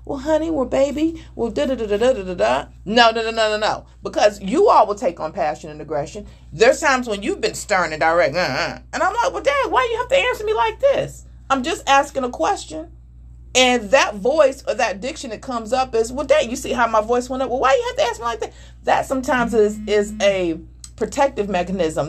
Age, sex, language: 40-59, female, English